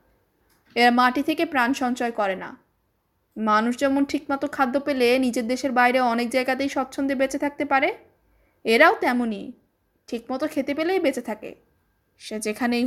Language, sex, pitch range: Hindi, female, 230-290 Hz